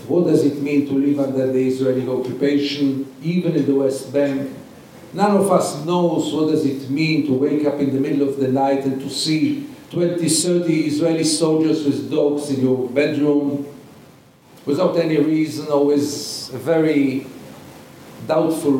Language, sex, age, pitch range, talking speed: English, male, 50-69, 135-155 Hz, 165 wpm